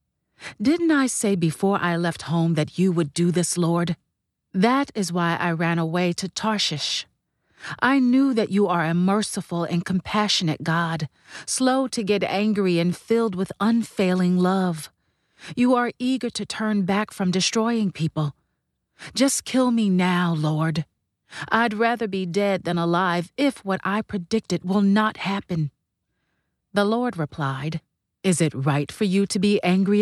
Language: English